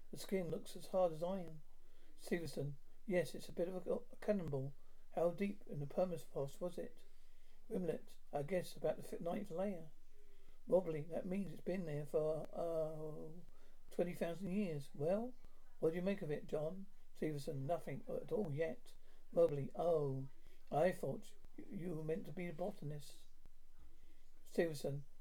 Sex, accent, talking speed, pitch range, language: male, British, 155 wpm, 150-185 Hz, English